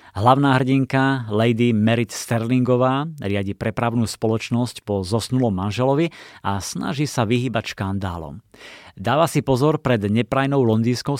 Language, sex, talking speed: Slovak, male, 120 wpm